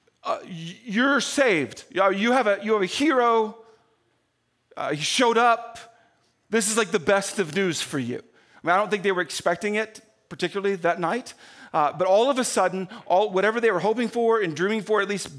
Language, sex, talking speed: English, male, 205 wpm